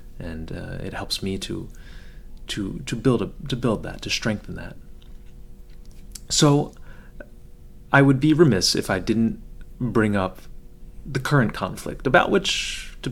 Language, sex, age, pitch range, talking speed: English, male, 30-49, 90-125 Hz, 145 wpm